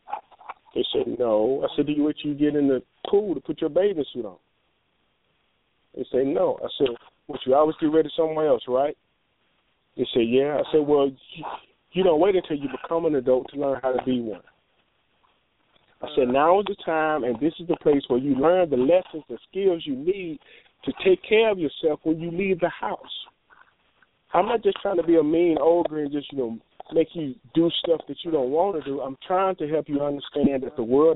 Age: 40-59